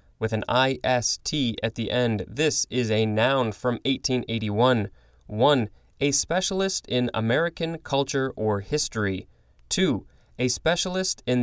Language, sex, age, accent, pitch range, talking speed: English, male, 20-39, American, 110-145 Hz, 125 wpm